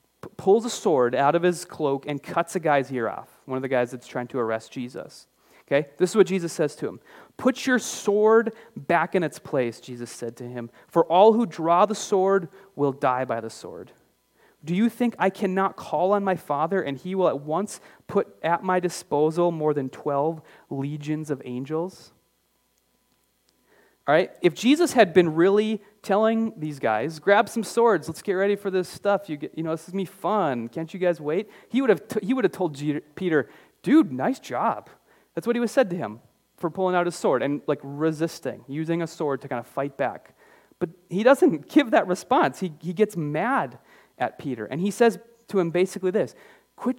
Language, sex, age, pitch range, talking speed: English, male, 30-49, 150-205 Hz, 210 wpm